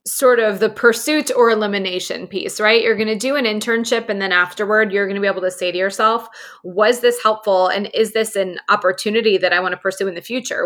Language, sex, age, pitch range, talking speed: English, female, 20-39, 190-235 Hz, 235 wpm